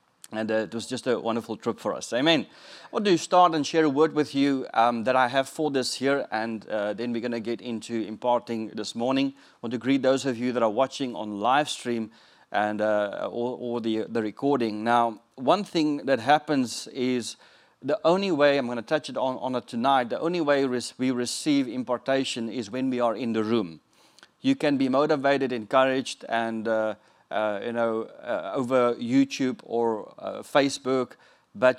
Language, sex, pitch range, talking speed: English, male, 115-135 Hz, 200 wpm